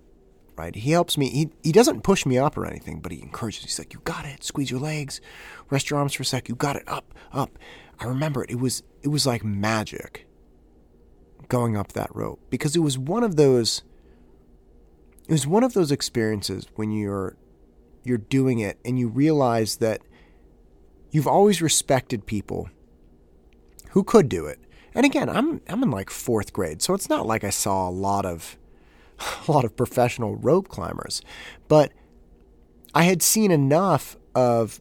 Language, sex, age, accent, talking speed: English, male, 30-49, American, 180 wpm